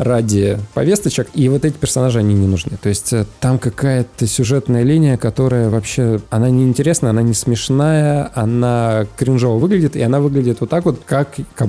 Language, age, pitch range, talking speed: Russian, 20-39, 110-135 Hz, 175 wpm